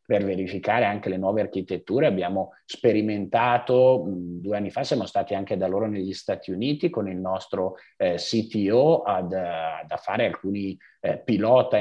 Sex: male